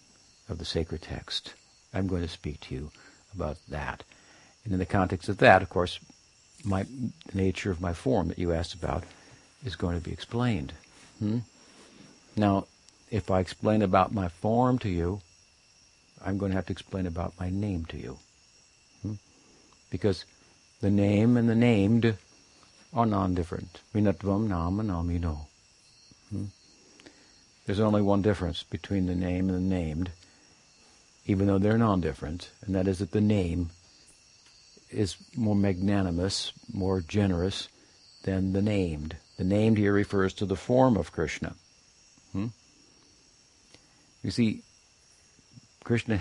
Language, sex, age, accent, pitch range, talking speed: English, male, 60-79, American, 90-105 Hz, 135 wpm